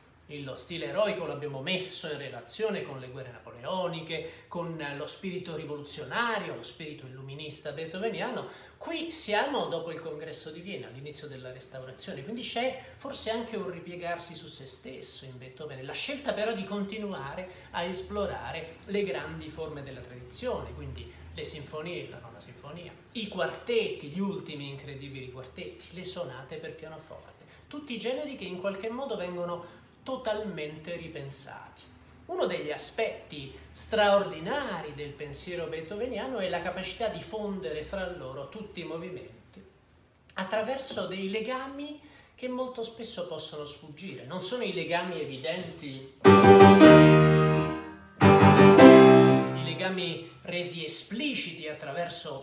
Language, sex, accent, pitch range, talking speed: Italian, male, native, 145-205 Hz, 125 wpm